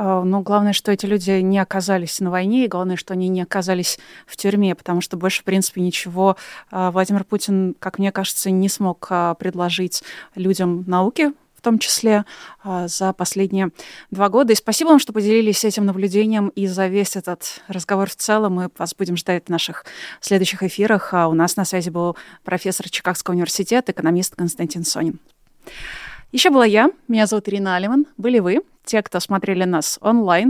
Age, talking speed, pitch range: 20-39, 170 wpm, 185-220 Hz